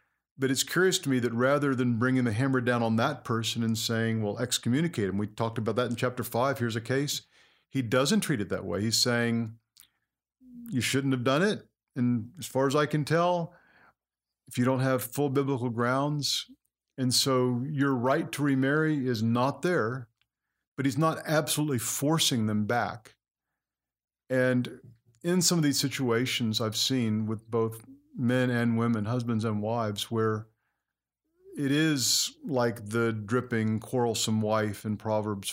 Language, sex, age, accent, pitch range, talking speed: English, male, 50-69, American, 110-135 Hz, 165 wpm